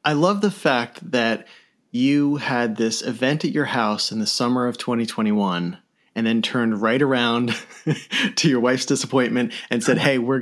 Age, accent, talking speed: 30-49, American, 175 wpm